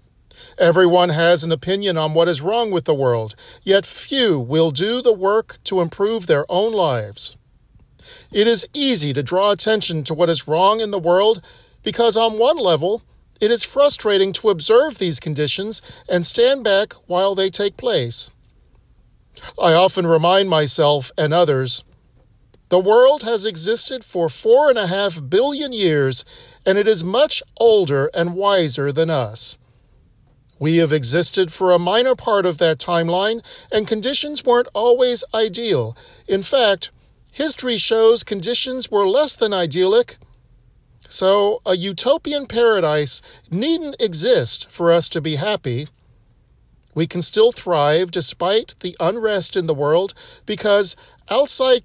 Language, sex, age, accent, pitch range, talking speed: English, male, 50-69, American, 160-225 Hz, 145 wpm